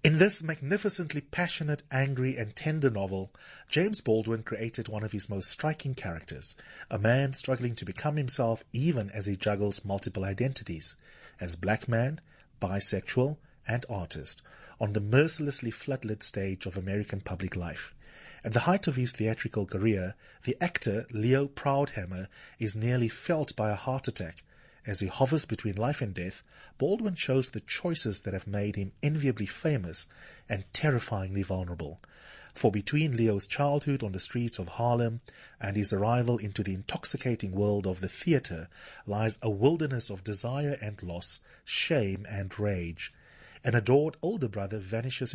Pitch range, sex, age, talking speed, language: 100-135 Hz, male, 30-49, 155 wpm, English